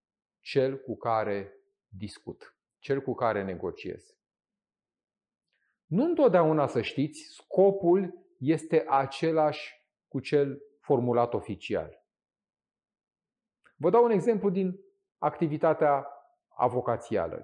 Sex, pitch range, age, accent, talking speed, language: male, 135-195 Hz, 40-59, native, 90 wpm, Romanian